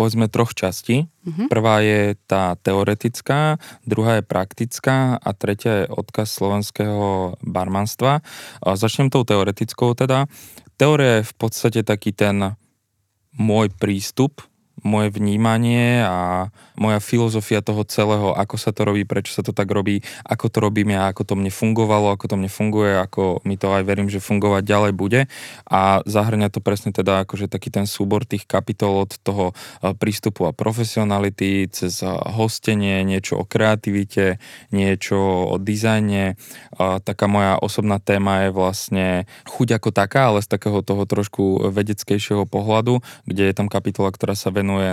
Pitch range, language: 100-110 Hz, Slovak